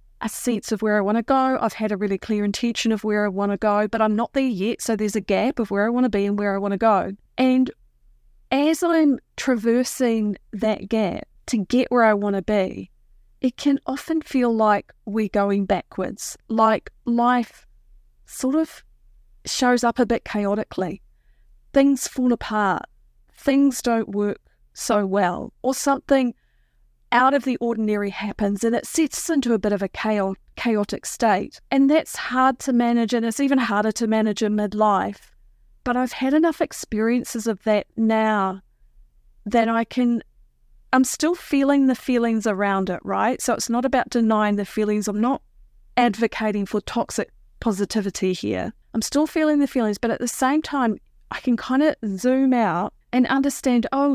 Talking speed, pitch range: 180 wpm, 210-255 Hz